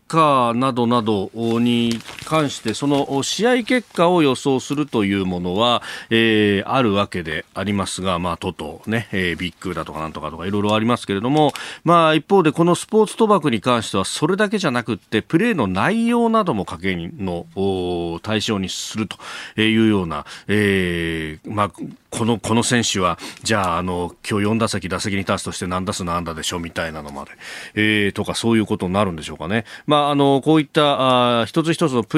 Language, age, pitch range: Japanese, 40-59, 95-135 Hz